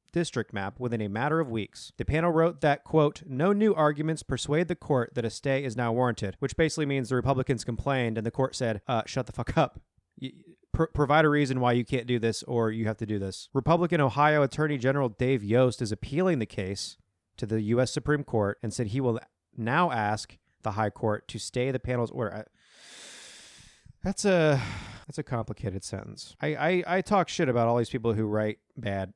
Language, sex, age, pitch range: English, male, 30-49, 115-150 Hz